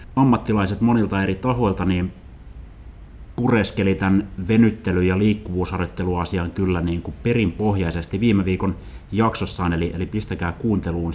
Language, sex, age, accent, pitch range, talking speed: Finnish, male, 30-49, native, 90-110 Hz, 115 wpm